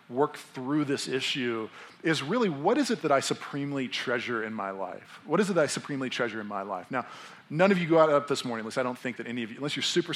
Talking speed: 265 wpm